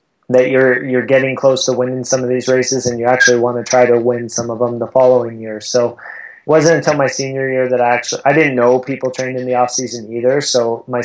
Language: English